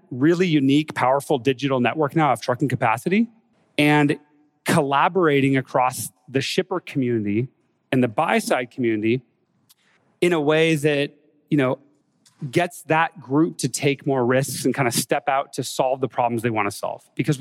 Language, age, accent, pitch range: English, 30-49, American, 130-165 Hz